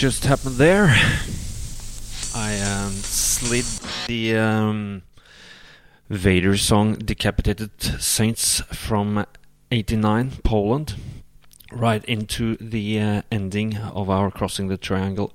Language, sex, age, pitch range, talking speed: English, male, 30-49, 95-110 Hz, 100 wpm